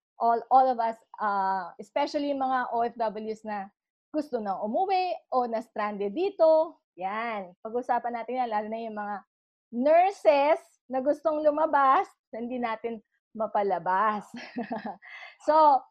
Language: English